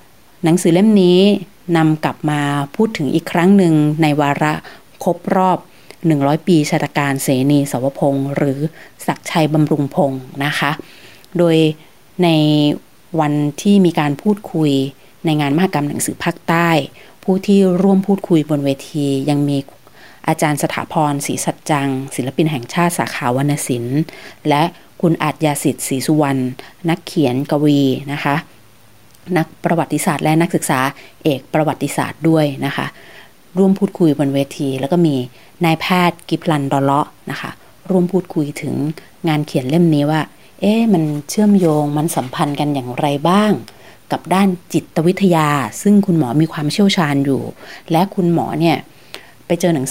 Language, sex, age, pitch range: Thai, female, 30-49, 140-170 Hz